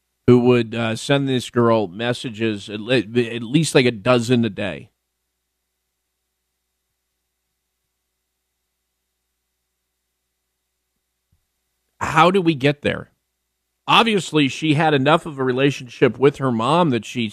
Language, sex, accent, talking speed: English, male, American, 115 wpm